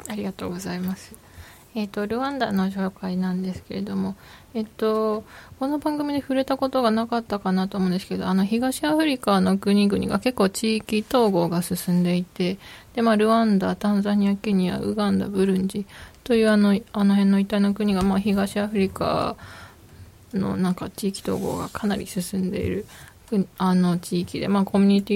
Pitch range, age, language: 195-220 Hz, 20-39, Japanese